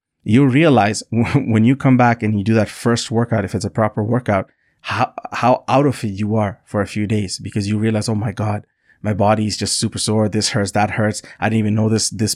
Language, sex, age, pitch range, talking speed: English, male, 20-39, 105-120 Hz, 245 wpm